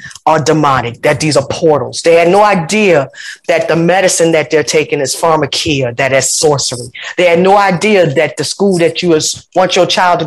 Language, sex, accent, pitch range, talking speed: English, female, American, 165-210 Hz, 205 wpm